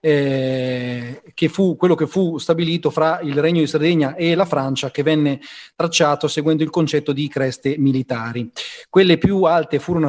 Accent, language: native, Italian